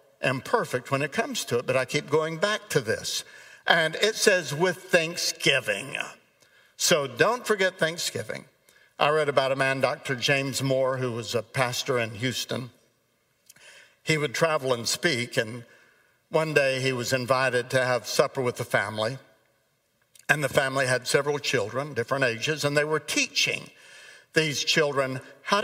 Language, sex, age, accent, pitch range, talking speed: English, male, 60-79, American, 125-165 Hz, 160 wpm